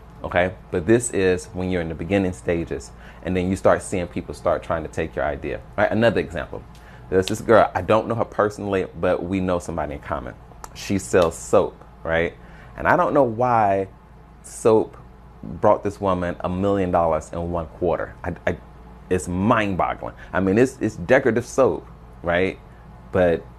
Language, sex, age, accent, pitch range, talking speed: English, male, 30-49, American, 85-105 Hz, 185 wpm